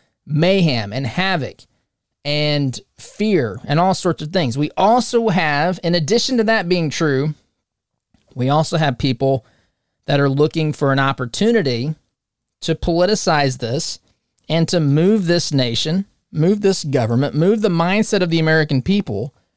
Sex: male